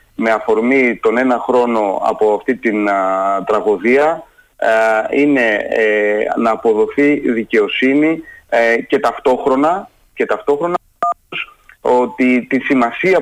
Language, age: Greek, 30-49